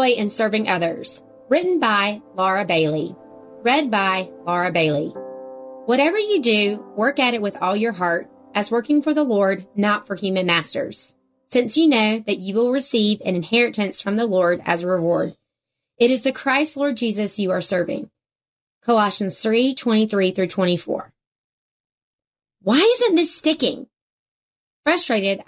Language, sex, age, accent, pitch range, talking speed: English, female, 30-49, American, 185-260 Hz, 155 wpm